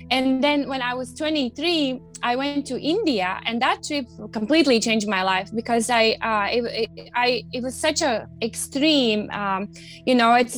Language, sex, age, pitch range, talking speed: English, female, 20-39, 215-260 Hz, 170 wpm